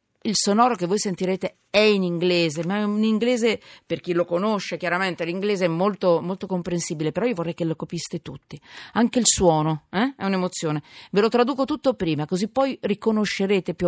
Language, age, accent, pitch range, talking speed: Italian, 40-59, native, 160-205 Hz, 195 wpm